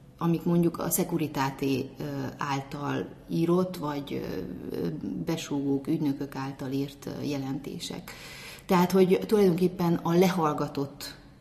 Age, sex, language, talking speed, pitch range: 30-49, female, Hungarian, 90 wpm, 145-185 Hz